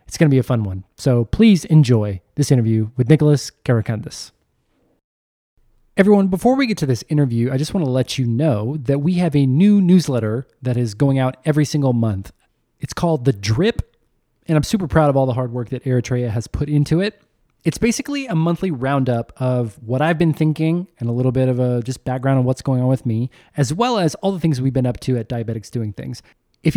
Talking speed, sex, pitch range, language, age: 225 wpm, male, 120-155 Hz, English, 20-39